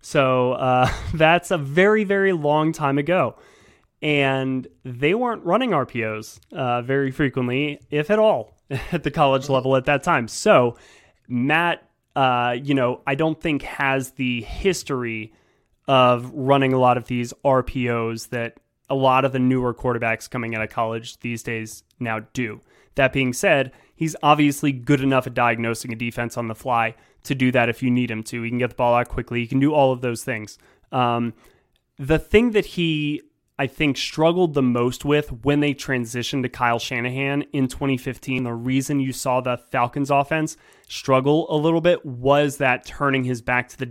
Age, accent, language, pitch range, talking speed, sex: 20-39, American, English, 120-145 Hz, 180 wpm, male